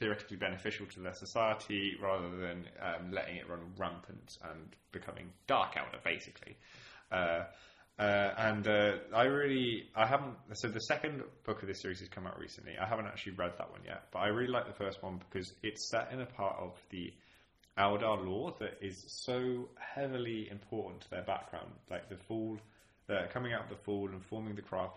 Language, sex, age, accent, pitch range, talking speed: English, male, 20-39, British, 95-110 Hz, 195 wpm